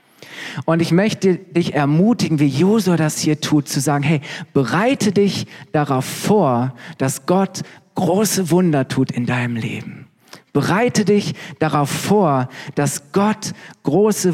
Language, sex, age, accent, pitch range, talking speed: German, male, 50-69, German, 145-195 Hz, 135 wpm